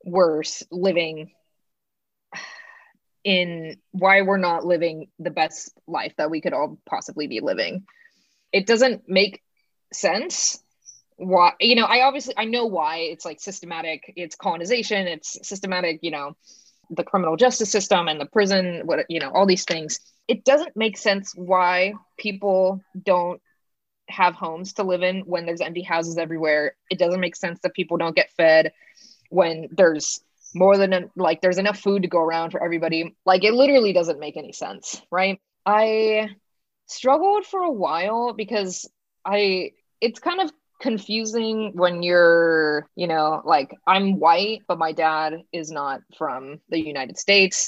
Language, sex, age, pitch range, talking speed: English, female, 20-39, 165-210 Hz, 155 wpm